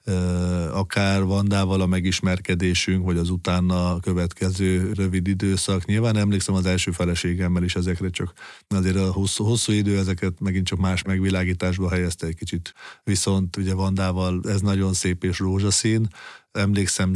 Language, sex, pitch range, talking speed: Hungarian, male, 90-100 Hz, 140 wpm